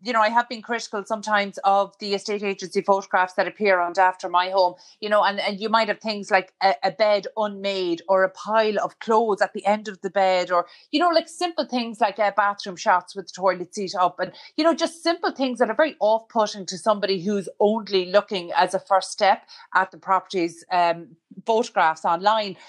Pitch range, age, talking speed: 180-220 Hz, 30-49, 220 wpm